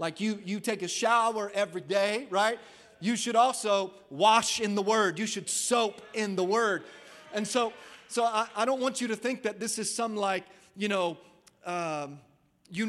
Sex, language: male, English